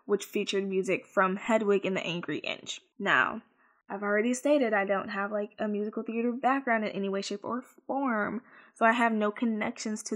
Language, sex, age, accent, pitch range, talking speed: English, female, 10-29, American, 195-225 Hz, 195 wpm